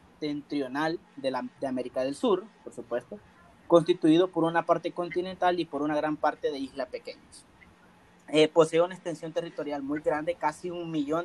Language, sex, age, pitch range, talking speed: Spanish, male, 30-49, 145-180 Hz, 165 wpm